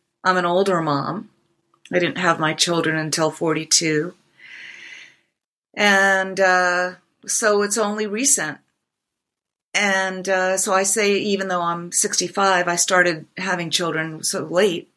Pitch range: 170-205 Hz